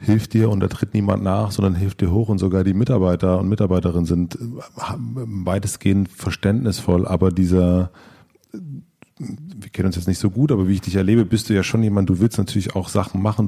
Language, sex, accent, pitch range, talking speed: German, male, German, 90-105 Hz, 200 wpm